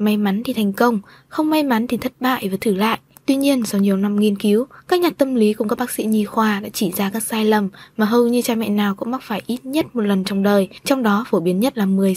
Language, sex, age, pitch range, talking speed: Vietnamese, female, 20-39, 205-245 Hz, 290 wpm